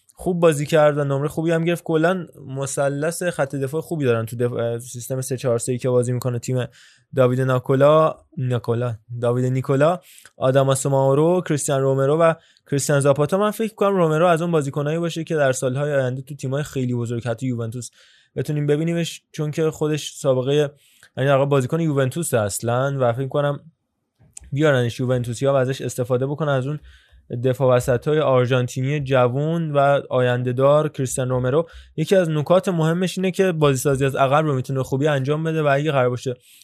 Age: 20-39